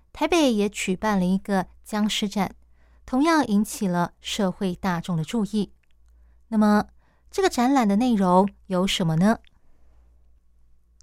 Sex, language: female, Chinese